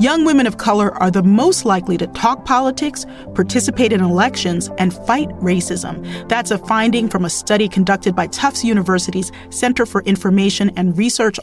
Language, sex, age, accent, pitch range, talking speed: English, female, 40-59, American, 185-235 Hz, 170 wpm